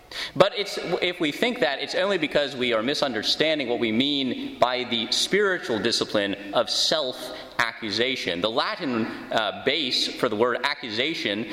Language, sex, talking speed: English, male, 150 wpm